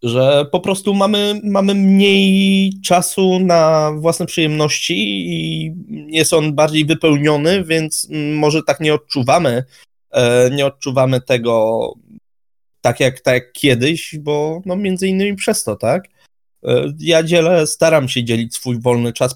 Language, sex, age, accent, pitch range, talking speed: Polish, male, 20-39, native, 120-155 Hz, 135 wpm